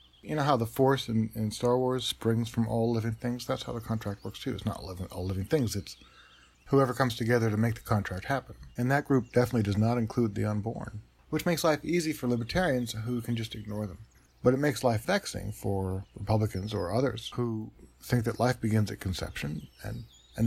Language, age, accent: English, 50-69, American